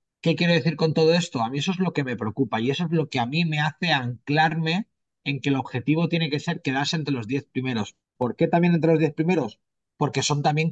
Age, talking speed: 30-49, 260 wpm